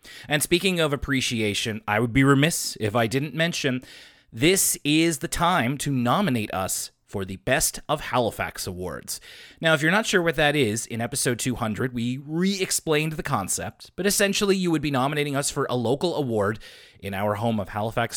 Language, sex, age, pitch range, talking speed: English, male, 30-49, 110-155 Hz, 185 wpm